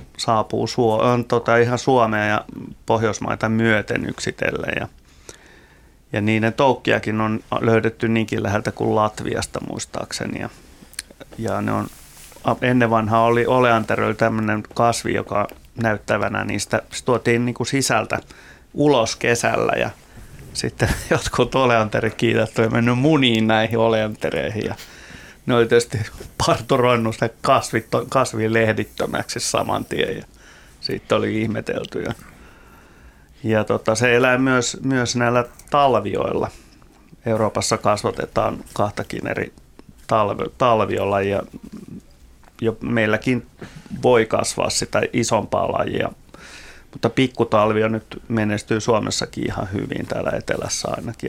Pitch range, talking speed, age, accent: 105-120 Hz, 105 wpm, 30-49, native